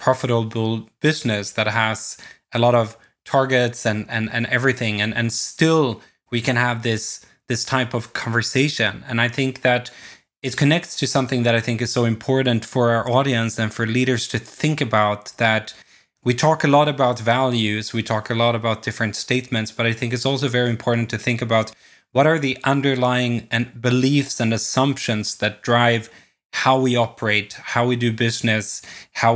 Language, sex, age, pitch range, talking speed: English, male, 20-39, 115-130 Hz, 180 wpm